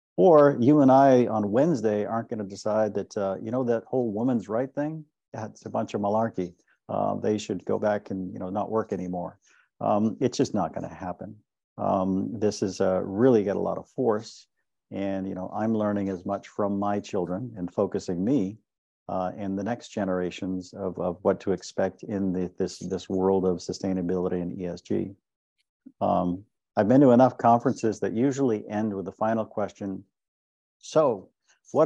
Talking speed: 185 wpm